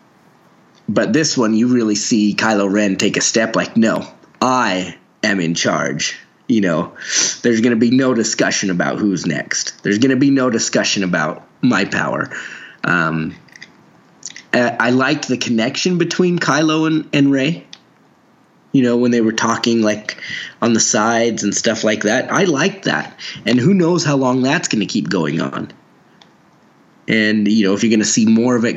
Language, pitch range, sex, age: English, 105-130 Hz, male, 20-39